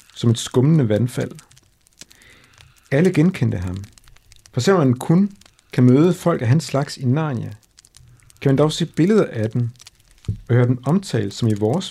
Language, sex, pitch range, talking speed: Danish, male, 110-145 Hz, 165 wpm